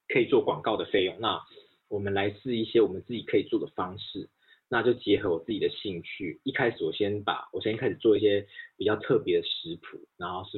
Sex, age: male, 20-39